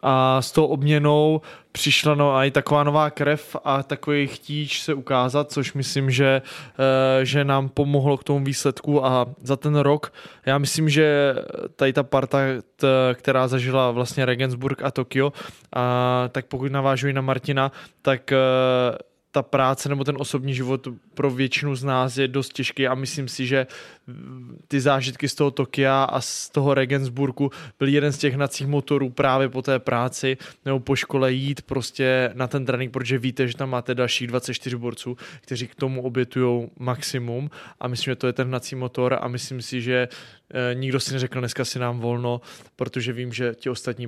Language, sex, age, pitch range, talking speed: Czech, male, 20-39, 125-140 Hz, 180 wpm